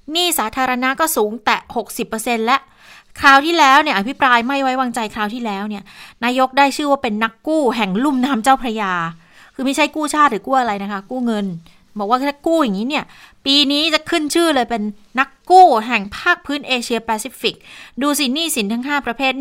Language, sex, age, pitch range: Thai, female, 20-39, 195-255 Hz